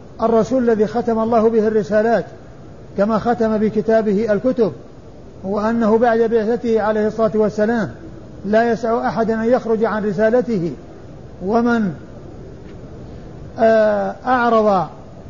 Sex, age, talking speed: male, 50-69, 100 wpm